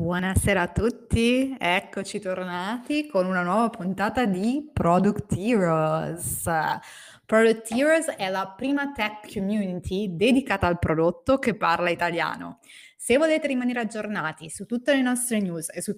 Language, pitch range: Italian, 185-280 Hz